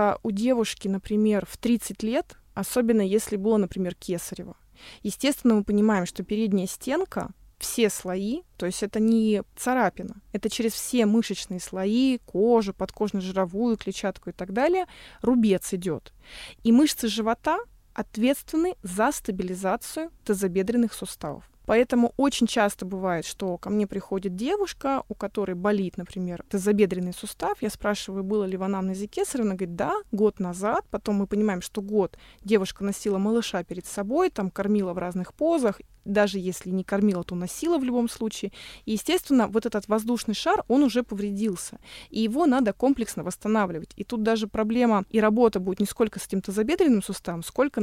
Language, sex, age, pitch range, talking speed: Russian, female, 20-39, 195-235 Hz, 155 wpm